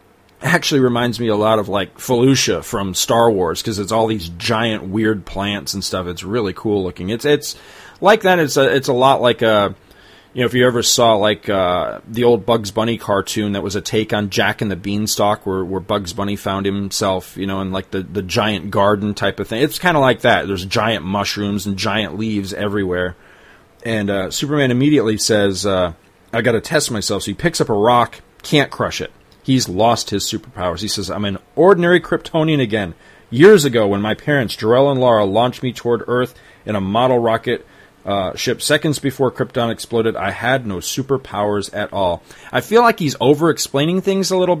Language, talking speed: English, 205 wpm